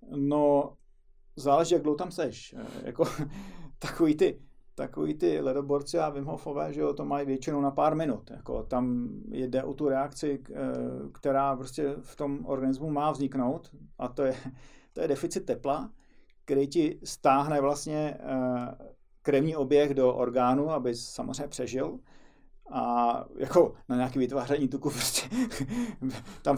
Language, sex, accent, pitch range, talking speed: Czech, male, native, 130-160 Hz, 140 wpm